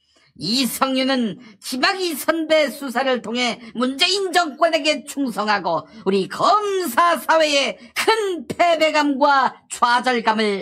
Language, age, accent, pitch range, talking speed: English, 40-59, Korean, 225-330 Hz, 80 wpm